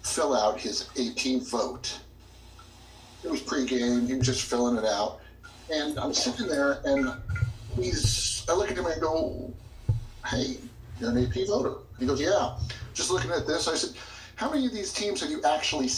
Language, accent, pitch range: English, American, 105-135 Hz